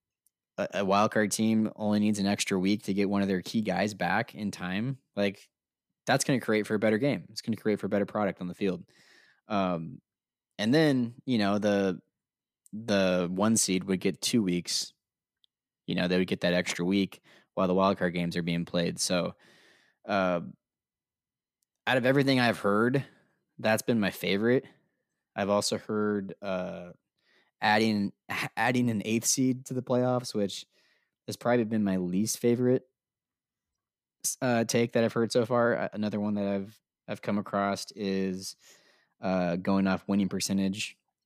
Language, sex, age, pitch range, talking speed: English, male, 20-39, 95-110 Hz, 170 wpm